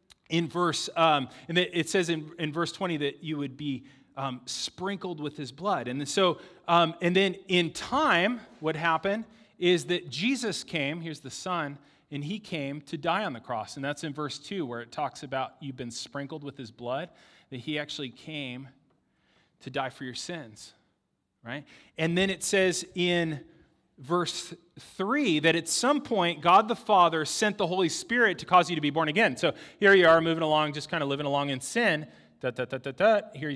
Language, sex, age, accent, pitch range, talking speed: English, male, 30-49, American, 140-180 Hz, 190 wpm